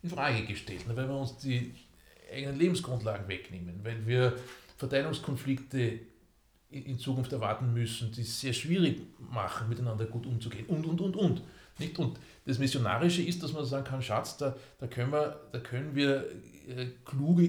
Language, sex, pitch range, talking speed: German, male, 125-170 Hz, 160 wpm